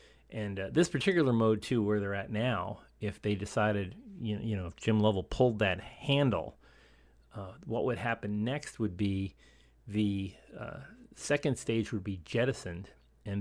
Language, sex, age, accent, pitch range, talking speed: English, male, 40-59, American, 95-115 Hz, 170 wpm